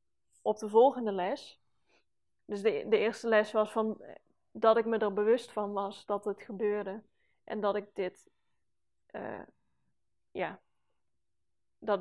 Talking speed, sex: 140 wpm, female